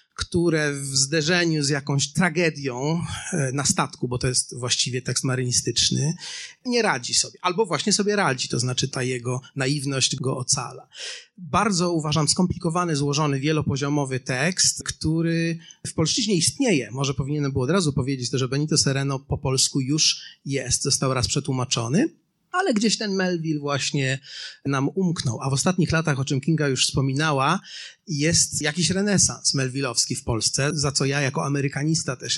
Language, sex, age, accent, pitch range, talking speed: Polish, male, 30-49, native, 130-165 Hz, 155 wpm